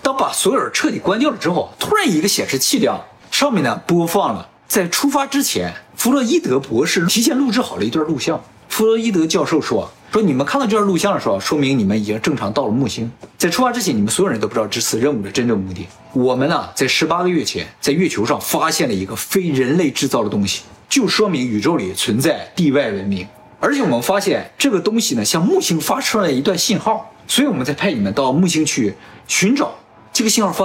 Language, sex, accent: Chinese, male, native